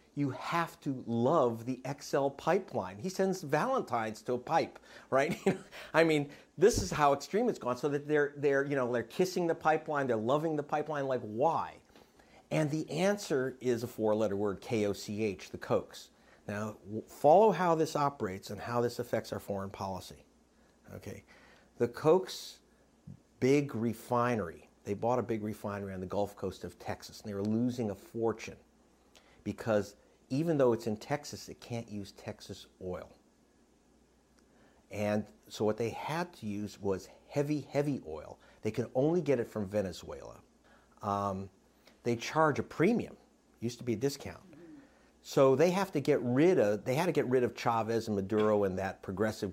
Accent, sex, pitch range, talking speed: American, male, 105-145 Hz, 170 wpm